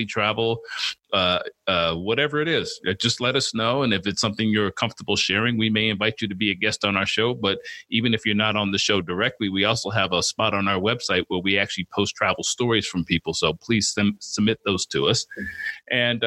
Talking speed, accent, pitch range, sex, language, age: 225 wpm, American, 100-115 Hz, male, English, 40-59